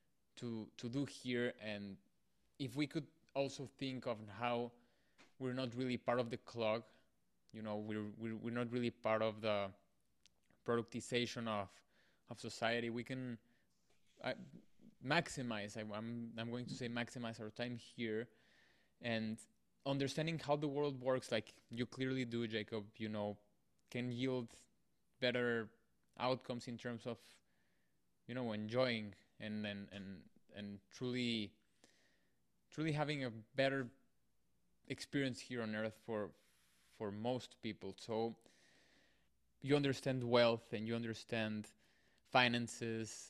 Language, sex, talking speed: English, male, 135 wpm